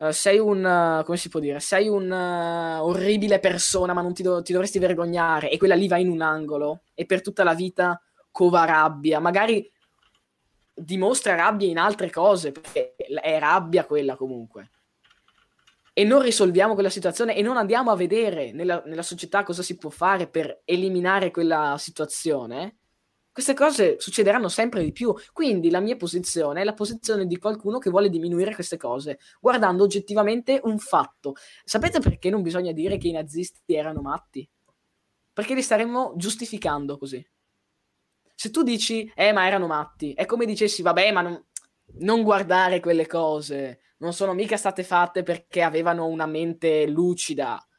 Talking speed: 160 wpm